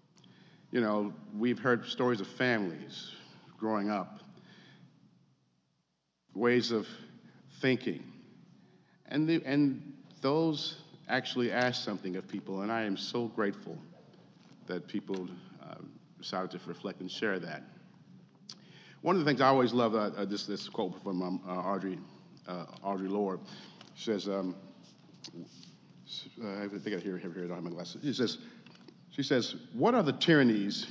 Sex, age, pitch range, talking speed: male, 50-69, 100-160 Hz, 140 wpm